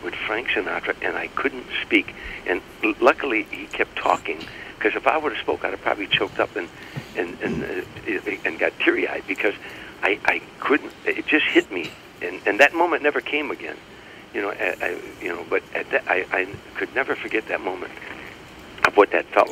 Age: 60-79